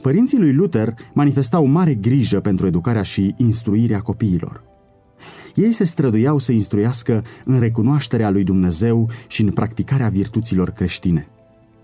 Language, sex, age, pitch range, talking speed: Romanian, male, 30-49, 95-130 Hz, 125 wpm